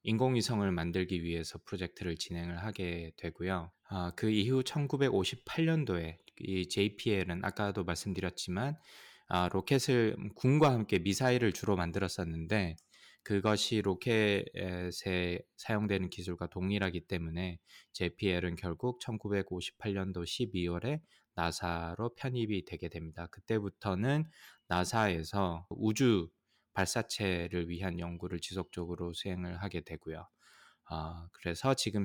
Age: 20-39